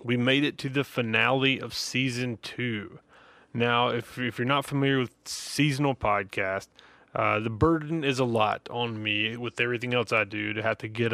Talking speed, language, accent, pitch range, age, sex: 190 wpm, English, American, 110-130 Hz, 20-39, male